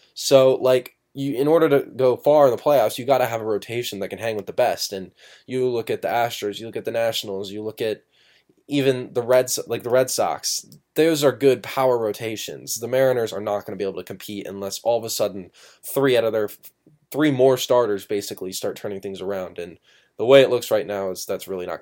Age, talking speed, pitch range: 10-29, 245 wpm, 105-125 Hz